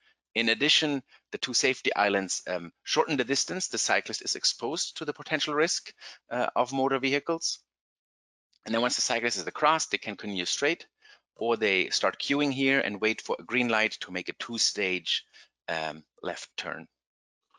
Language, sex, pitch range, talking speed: English, male, 105-145 Hz, 170 wpm